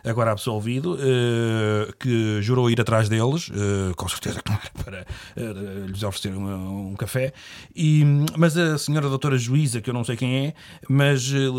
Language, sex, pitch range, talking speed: Portuguese, male, 105-135 Hz, 150 wpm